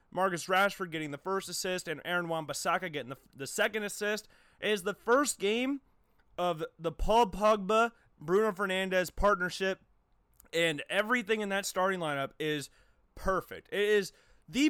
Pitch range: 165-205 Hz